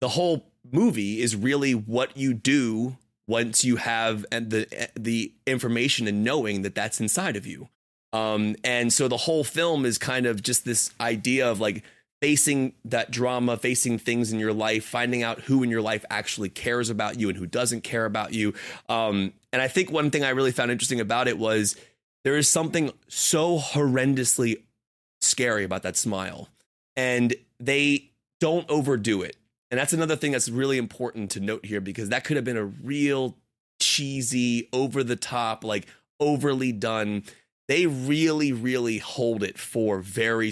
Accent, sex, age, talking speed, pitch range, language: American, male, 30-49, 175 wpm, 110-135 Hz, English